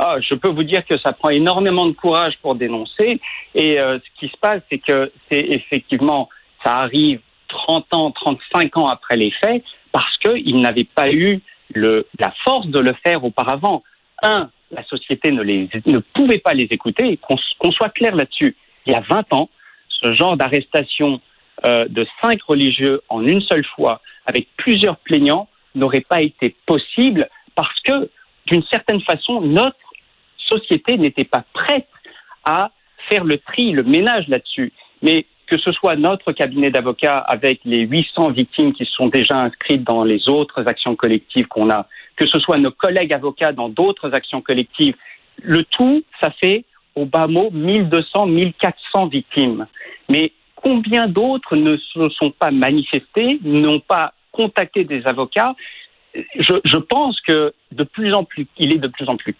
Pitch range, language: 140-230 Hz, French